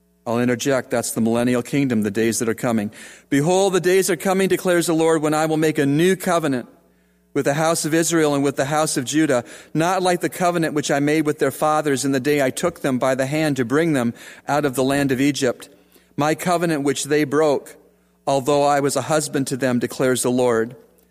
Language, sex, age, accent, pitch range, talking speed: English, male, 40-59, American, 120-155 Hz, 225 wpm